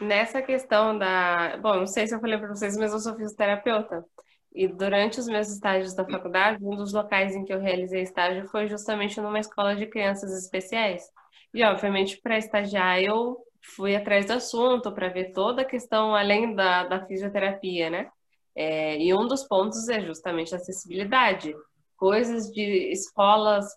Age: 10-29